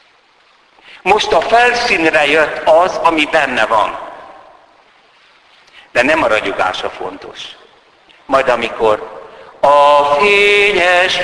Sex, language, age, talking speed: male, Hungarian, 60-79, 90 wpm